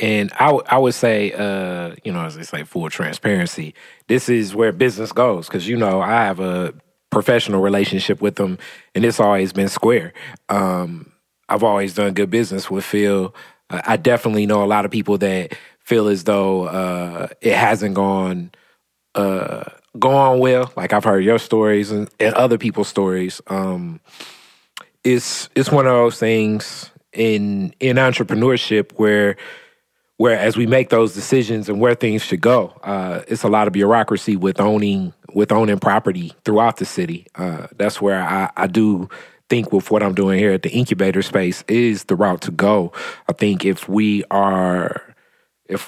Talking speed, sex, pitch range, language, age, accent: 175 wpm, male, 95-115 Hz, English, 30-49, American